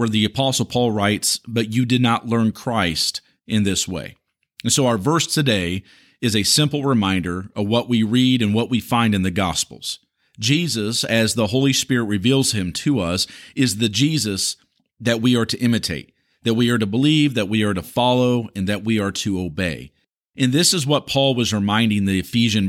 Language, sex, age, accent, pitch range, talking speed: English, male, 40-59, American, 105-130 Hz, 200 wpm